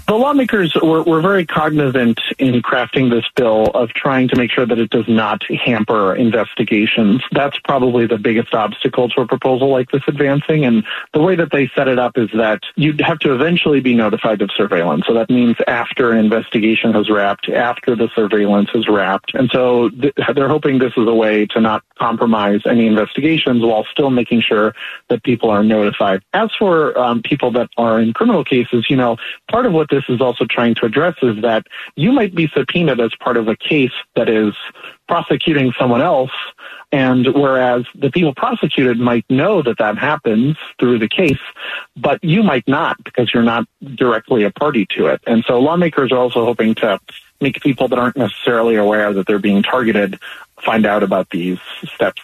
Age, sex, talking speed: 30-49, male, 195 wpm